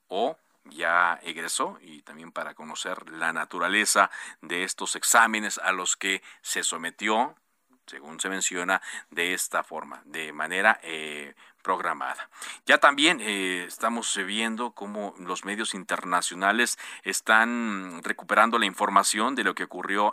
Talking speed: 130 wpm